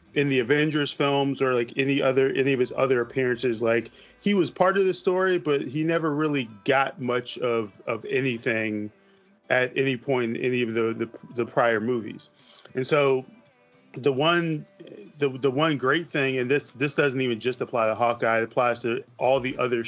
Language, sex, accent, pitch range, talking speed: English, male, American, 115-135 Hz, 195 wpm